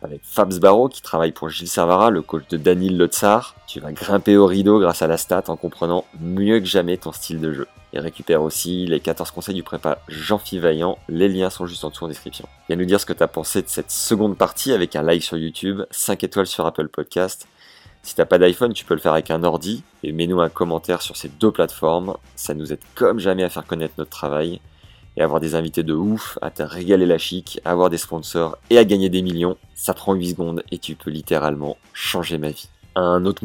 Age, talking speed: 30-49, 240 wpm